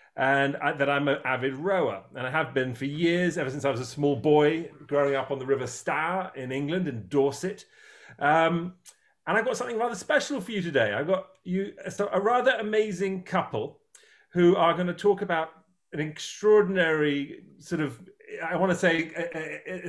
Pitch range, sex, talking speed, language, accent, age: 135-190 Hz, male, 185 wpm, English, British, 40-59